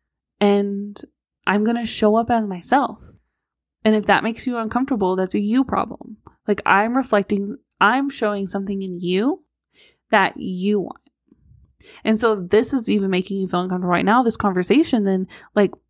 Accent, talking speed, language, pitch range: American, 170 wpm, English, 195-245 Hz